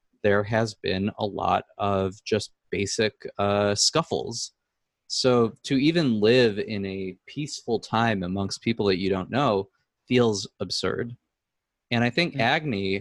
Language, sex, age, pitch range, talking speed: English, male, 20-39, 100-115 Hz, 140 wpm